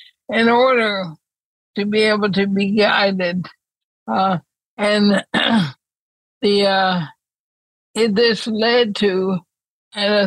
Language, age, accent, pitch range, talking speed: English, 60-79, American, 180-215 Hz, 95 wpm